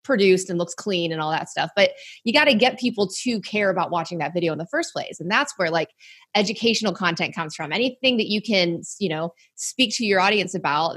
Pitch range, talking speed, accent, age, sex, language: 170-220 Hz, 235 wpm, American, 20-39, female, English